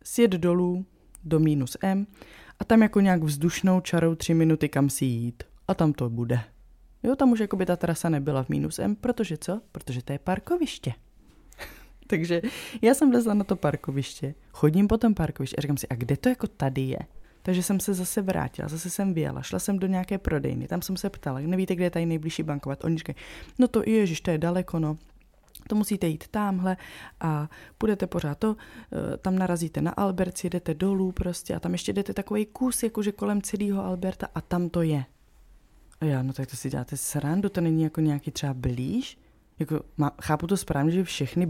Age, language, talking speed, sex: 20-39, Czech, 205 wpm, female